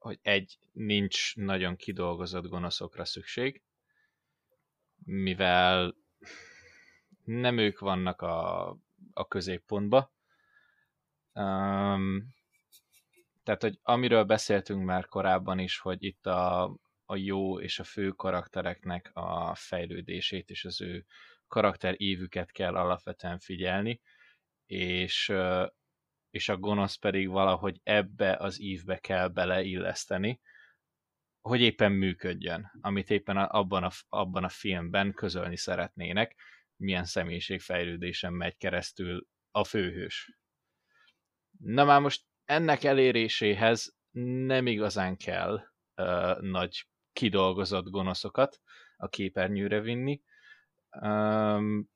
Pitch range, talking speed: 90-110 Hz, 100 wpm